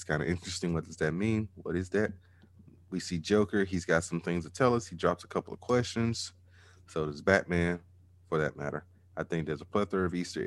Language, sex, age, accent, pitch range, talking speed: English, male, 30-49, American, 85-95 Hz, 230 wpm